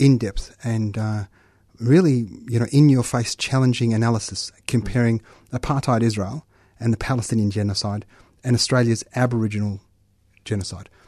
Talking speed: 110 wpm